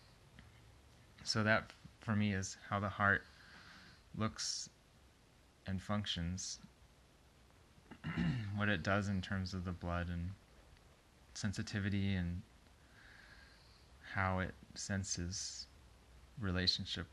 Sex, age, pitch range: male, 20-39, 85-100 Hz